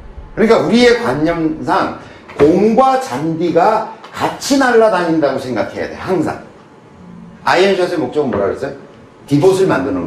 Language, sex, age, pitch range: Korean, male, 40-59, 160-245 Hz